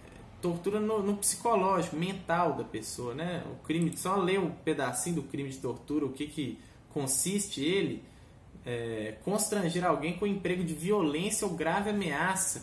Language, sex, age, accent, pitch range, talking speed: Portuguese, male, 20-39, Brazilian, 135-205 Hz, 160 wpm